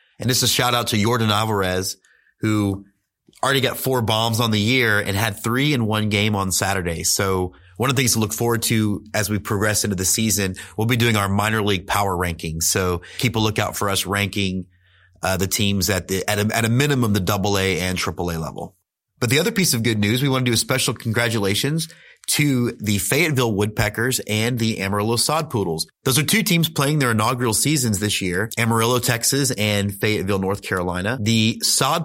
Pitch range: 100-130 Hz